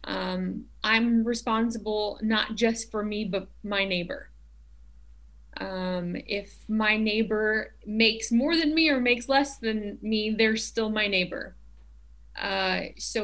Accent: American